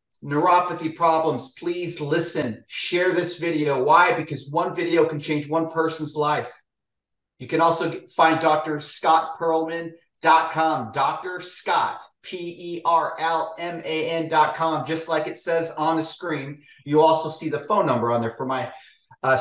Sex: male